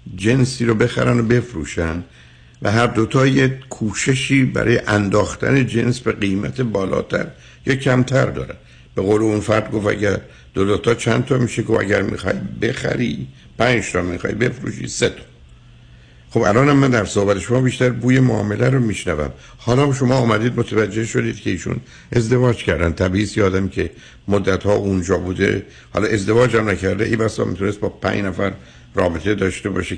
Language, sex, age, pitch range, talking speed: Persian, male, 60-79, 80-110 Hz, 160 wpm